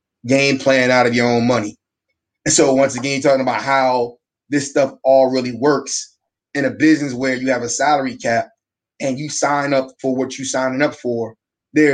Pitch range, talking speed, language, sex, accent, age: 130-160 Hz, 200 wpm, English, male, American, 20-39